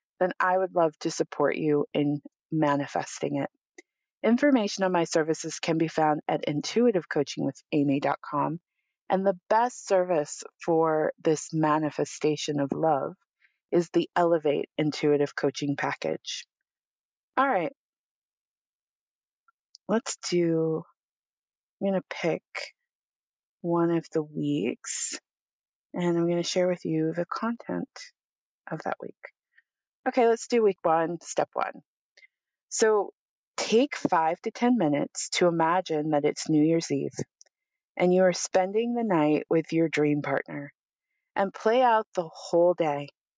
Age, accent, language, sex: 30-49, American, English, female